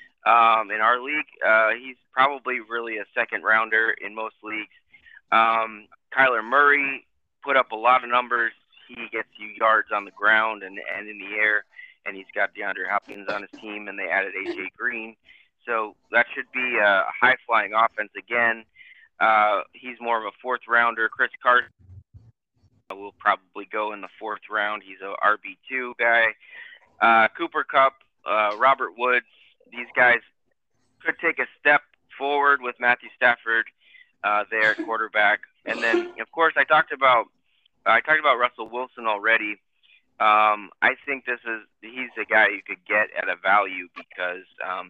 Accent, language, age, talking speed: American, English, 20-39, 165 wpm